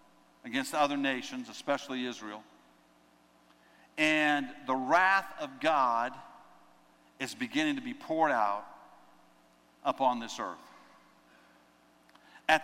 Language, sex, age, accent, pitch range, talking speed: English, male, 50-69, American, 140-200 Hz, 95 wpm